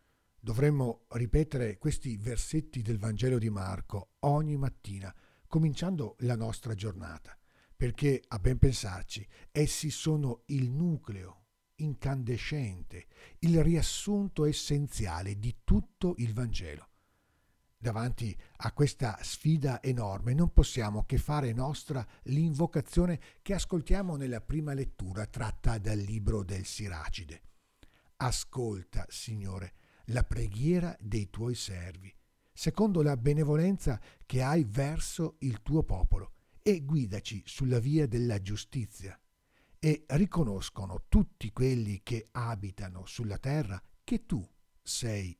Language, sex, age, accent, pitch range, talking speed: Italian, male, 50-69, native, 100-145 Hz, 110 wpm